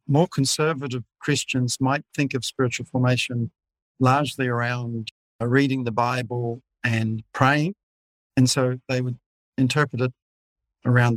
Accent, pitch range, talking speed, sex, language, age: Australian, 120-140 Hz, 125 wpm, male, English, 50-69